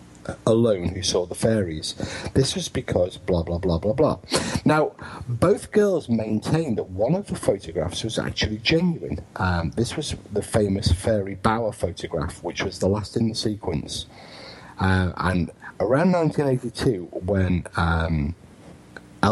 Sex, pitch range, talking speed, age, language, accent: male, 90-115 Hz, 140 wpm, 50-69, English, British